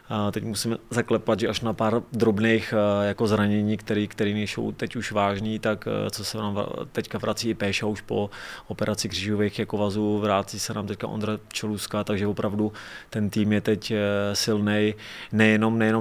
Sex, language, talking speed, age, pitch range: male, Czech, 165 wpm, 20-39, 100-110 Hz